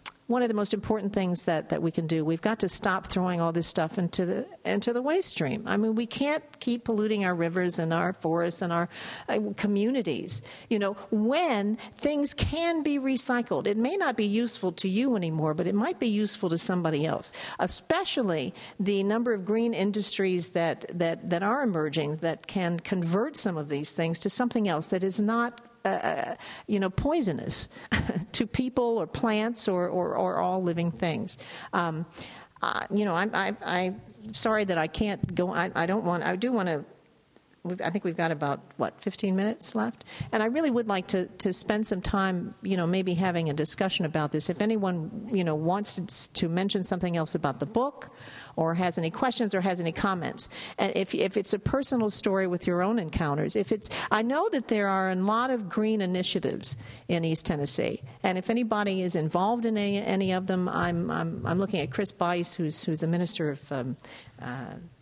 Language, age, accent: English, 50-69, American